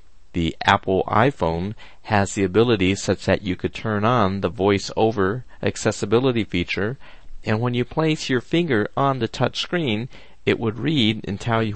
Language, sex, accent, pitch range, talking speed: English, male, American, 95-125 Hz, 170 wpm